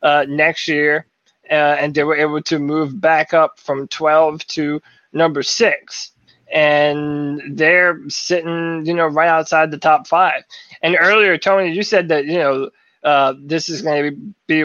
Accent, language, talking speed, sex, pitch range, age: American, English, 170 wpm, male, 150-205 Hz, 20-39